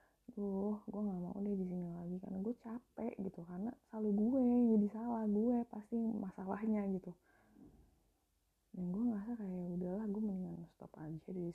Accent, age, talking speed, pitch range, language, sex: native, 20-39, 165 wpm, 170-210 Hz, Indonesian, female